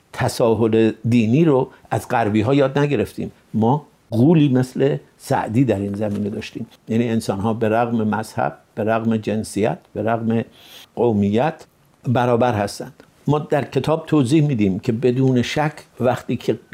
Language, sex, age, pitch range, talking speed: Persian, male, 60-79, 110-130 Hz, 145 wpm